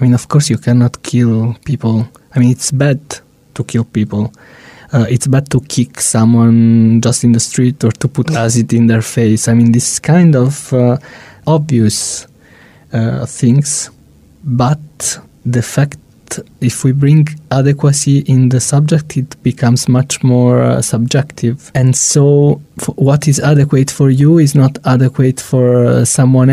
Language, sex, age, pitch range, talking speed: English, male, 20-39, 115-140 Hz, 160 wpm